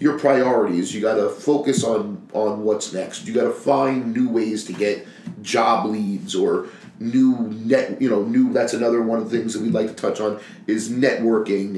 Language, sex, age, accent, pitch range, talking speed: English, male, 40-59, American, 105-170 Hz, 195 wpm